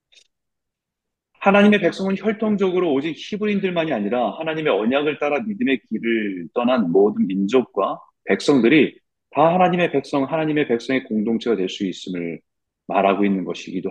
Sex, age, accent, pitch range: male, 30-49, native, 120-180 Hz